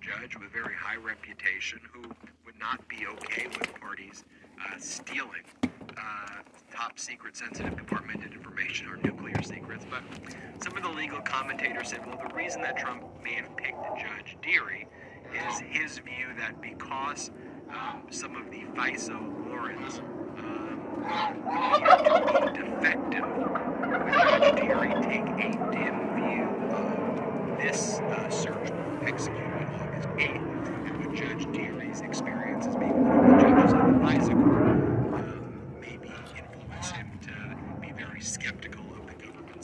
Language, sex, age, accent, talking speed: English, male, 50-69, American, 140 wpm